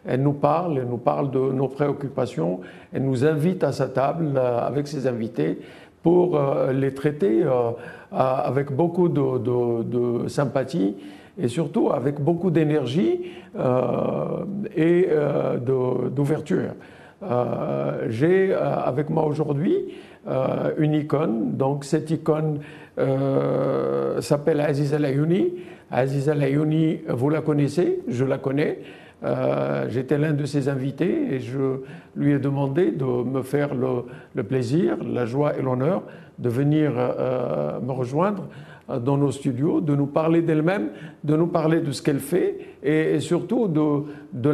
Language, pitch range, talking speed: French, 130-160 Hz, 135 wpm